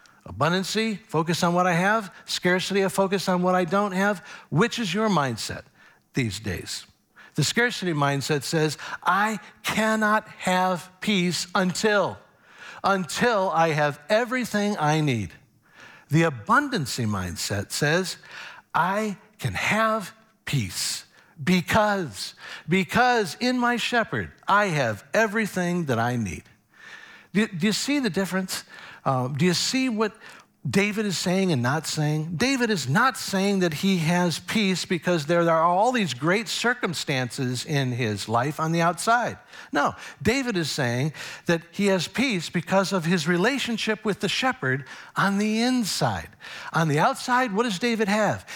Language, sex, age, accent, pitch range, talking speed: English, male, 60-79, American, 150-215 Hz, 145 wpm